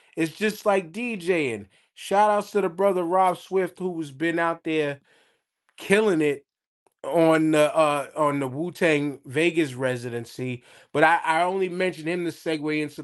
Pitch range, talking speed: 140-190 Hz, 160 wpm